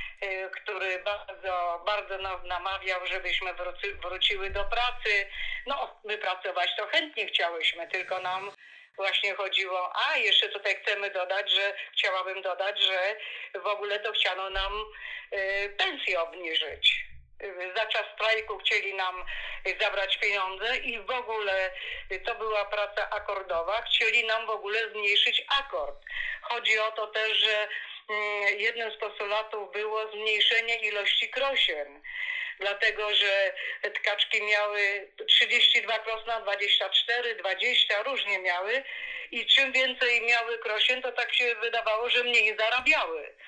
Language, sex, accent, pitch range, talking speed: Polish, female, native, 200-235 Hz, 125 wpm